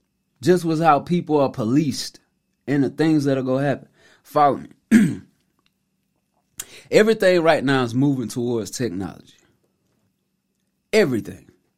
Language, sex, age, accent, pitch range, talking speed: English, male, 30-49, American, 130-165 Hz, 115 wpm